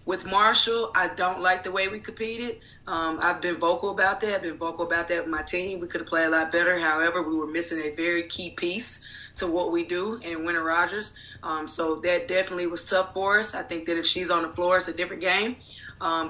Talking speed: 245 wpm